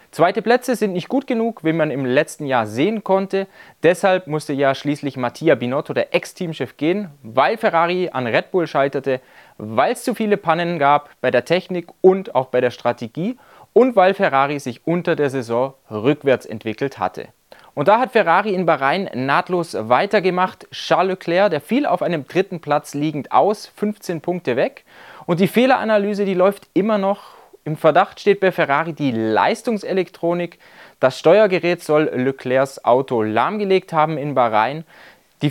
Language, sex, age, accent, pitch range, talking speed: German, male, 30-49, German, 135-195 Hz, 165 wpm